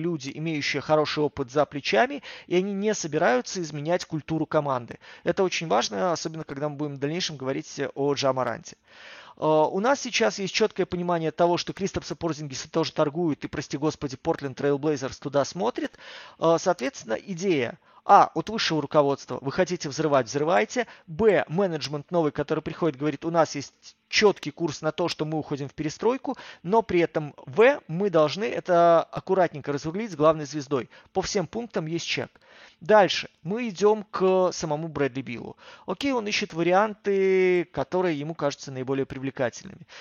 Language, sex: Russian, male